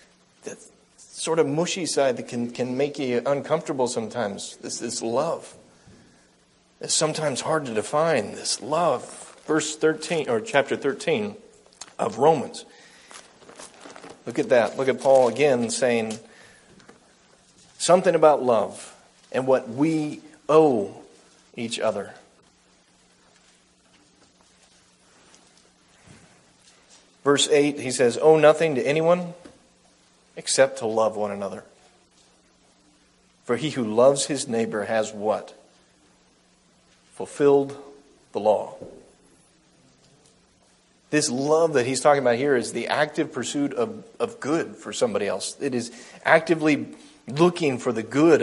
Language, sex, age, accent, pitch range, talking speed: English, male, 40-59, American, 115-150 Hz, 115 wpm